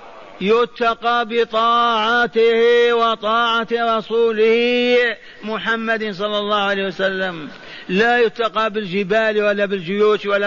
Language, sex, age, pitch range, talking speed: Arabic, male, 50-69, 180-220 Hz, 85 wpm